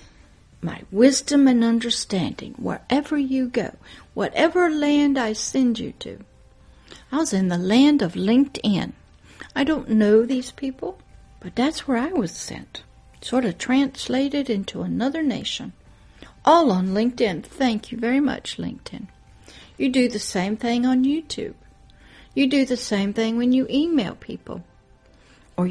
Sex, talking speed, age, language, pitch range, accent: female, 145 wpm, 60-79, English, 210-270 Hz, American